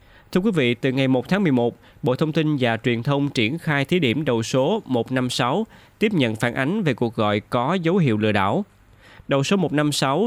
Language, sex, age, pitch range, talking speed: Vietnamese, male, 20-39, 110-145 Hz, 210 wpm